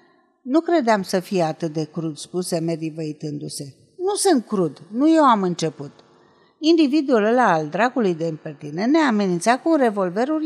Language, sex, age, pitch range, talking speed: Romanian, female, 50-69, 180-275 Hz, 150 wpm